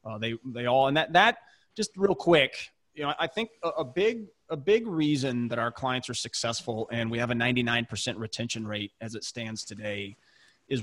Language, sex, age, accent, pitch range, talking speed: English, male, 30-49, American, 115-145 Hz, 205 wpm